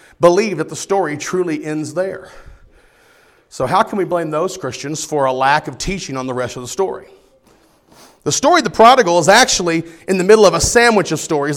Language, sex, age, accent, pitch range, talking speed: English, male, 40-59, American, 165-210 Hz, 205 wpm